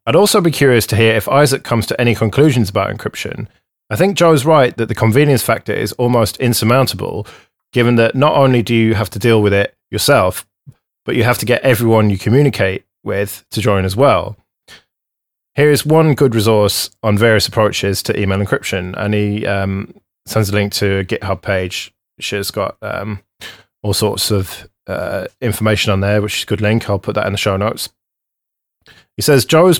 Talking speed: 195 wpm